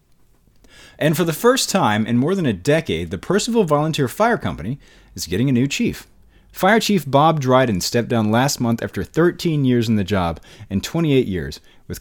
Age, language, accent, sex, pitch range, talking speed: 30-49, English, American, male, 95-135 Hz, 190 wpm